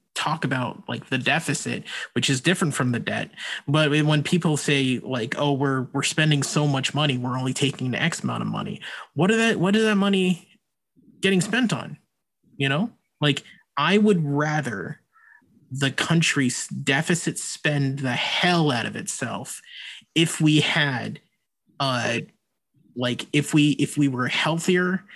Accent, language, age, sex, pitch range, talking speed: American, English, 30-49, male, 135-170 Hz, 155 wpm